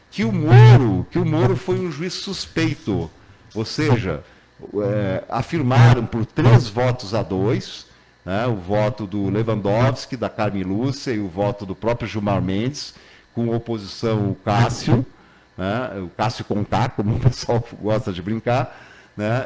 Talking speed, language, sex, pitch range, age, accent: 140 wpm, Portuguese, male, 110-135 Hz, 50-69, Brazilian